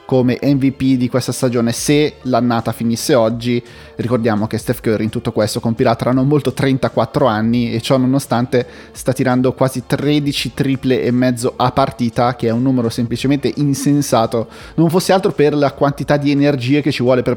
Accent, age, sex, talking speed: native, 20-39, male, 180 wpm